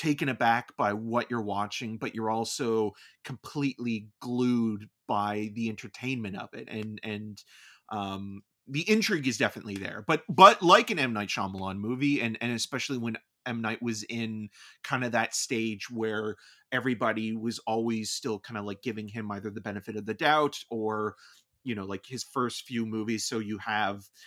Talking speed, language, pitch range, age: 175 wpm, English, 105-125 Hz, 30-49